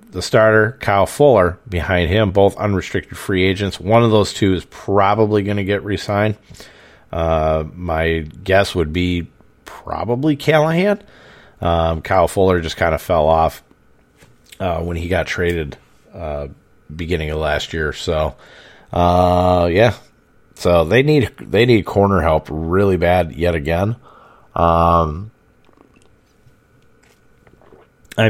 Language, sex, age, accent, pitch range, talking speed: English, male, 40-59, American, 85-105 Hz, 130 wpm